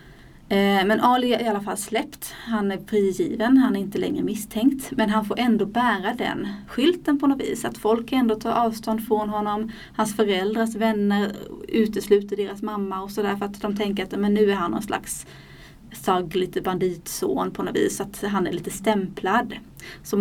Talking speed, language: 185 wpm, Swedish